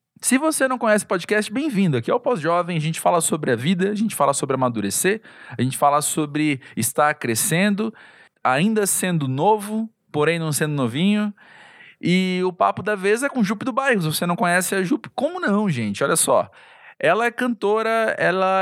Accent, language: Brazilian, Portuguese